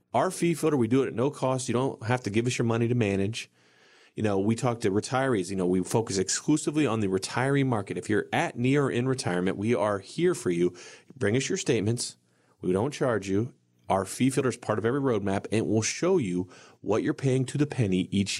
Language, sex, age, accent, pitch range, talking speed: English, male, 30-49, American, 105-150 Hz, 240 wpm